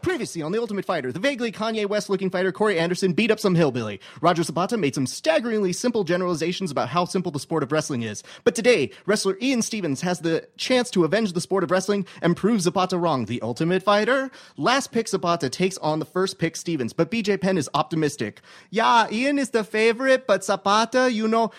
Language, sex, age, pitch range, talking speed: English, male, 30-49, 150-215 Hz, 210 wpm